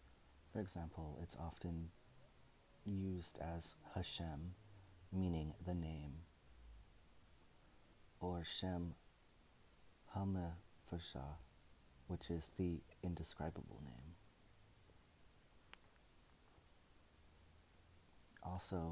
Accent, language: American, English